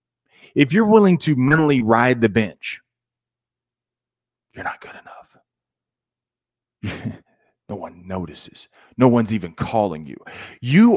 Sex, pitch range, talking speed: male, 110-135 Hz, 115 wpm